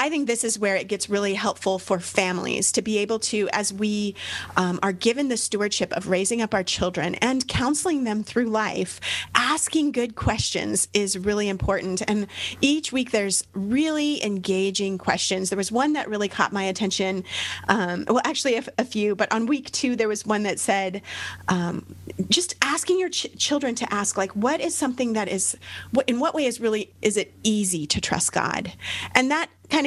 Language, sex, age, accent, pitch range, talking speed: English, female, 30-49, American, 195-255 Hz, 190 wpm